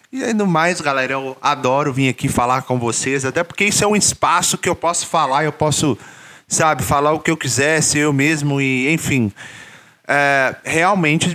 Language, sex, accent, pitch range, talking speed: Portuguese, male, Brazilian, 135-160 Hz, 190 wpm